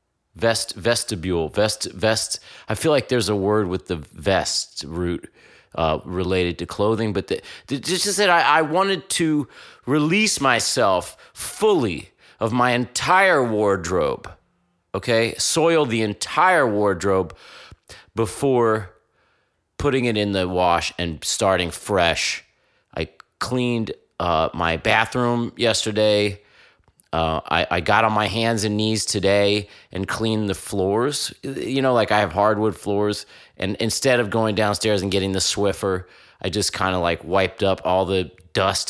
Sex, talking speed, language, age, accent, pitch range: male, 140 wpm, English, 30-49, American, 90-115 Hz